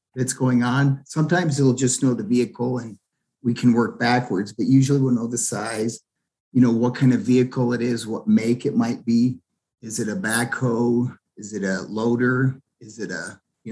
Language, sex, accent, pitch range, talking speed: English, male, American, 110-135 Hz, 195 wpm